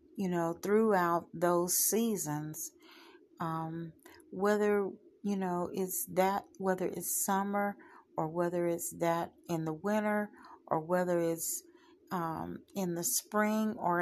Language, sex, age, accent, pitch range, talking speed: English, female, 40-59, American, 170-225 Hz, 125 wpm